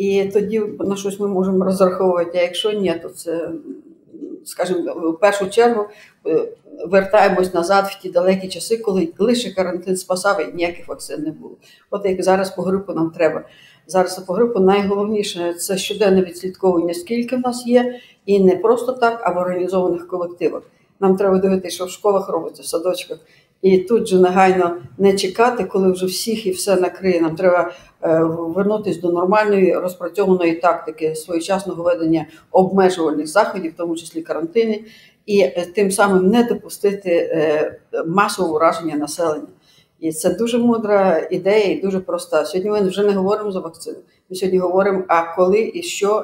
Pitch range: 175-200 Hz